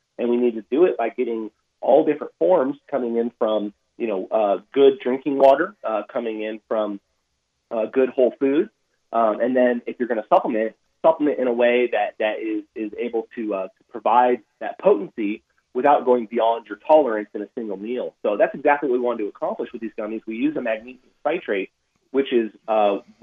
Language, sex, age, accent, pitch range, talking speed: English, male, 30-49, American, 110-135 Hz, 200 wpm